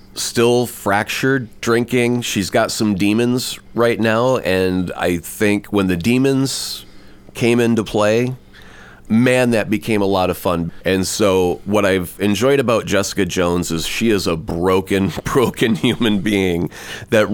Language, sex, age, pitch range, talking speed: English, male, 30-49, 95-120 Hz, 145 wpm